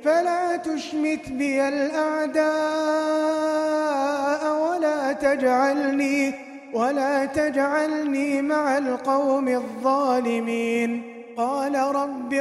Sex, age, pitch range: male, 20-39, 260-280 Hz